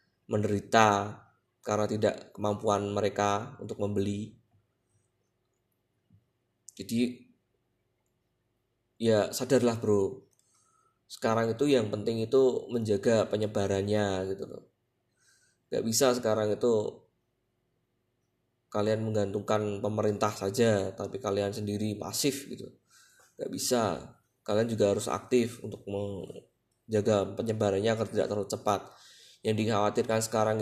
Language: Indonesian